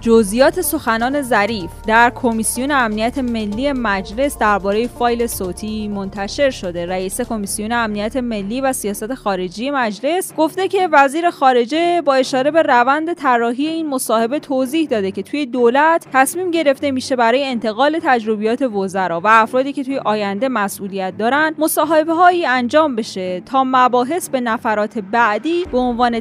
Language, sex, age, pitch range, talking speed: Persian, female, 20-39, 215-285 Hz, 140 wpm